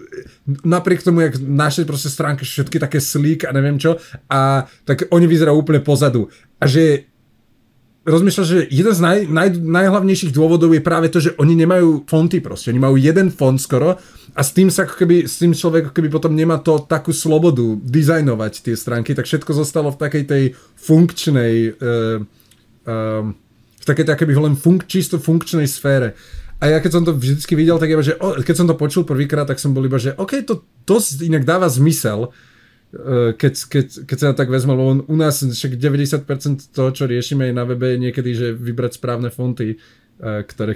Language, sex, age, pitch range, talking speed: Slovak, male, 30-49, 120-160 Hz, 180 wpm